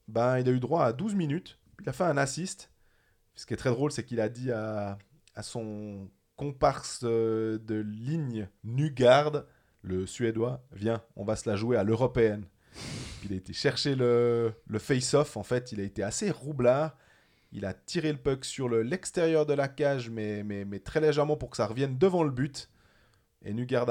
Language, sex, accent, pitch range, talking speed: French, male, French, 110-145 Hz, 195 wpm